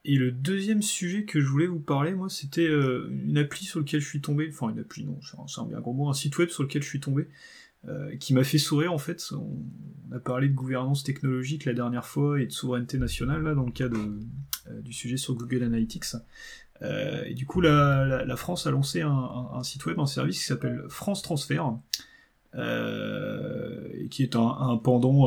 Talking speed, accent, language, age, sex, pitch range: 230 wpm, French, French, 30-49, male, 120-145 Hz